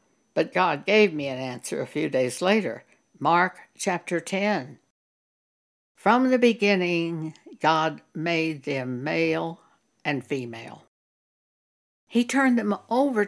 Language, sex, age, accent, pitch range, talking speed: English, female, 60-79, American, 155-220 Hz, 115 wpm